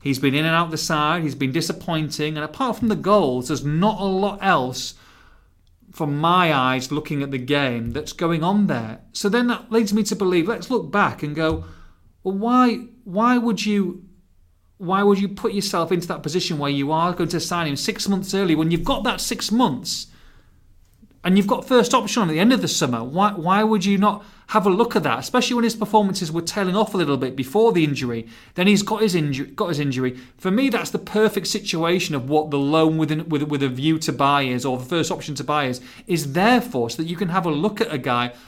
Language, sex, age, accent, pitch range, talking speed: English, male, 30-49, British, 145-200 Hz, 235 wpm